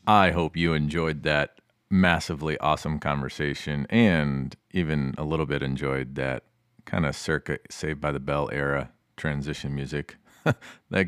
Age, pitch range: 30-49, 75-90 Hz